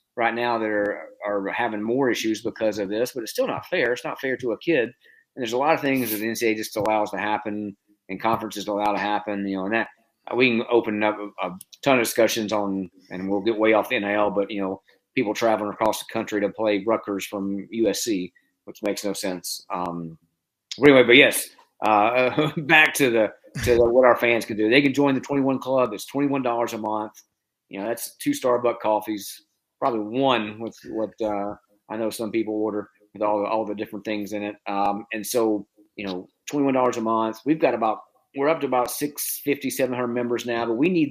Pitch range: 105-120 Hz